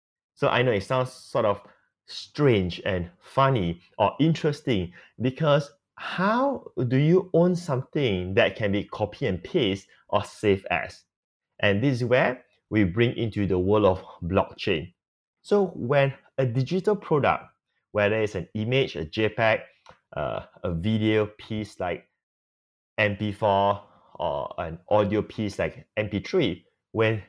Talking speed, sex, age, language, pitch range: 135 wpm, male, 30-49, English, 100-140 Hz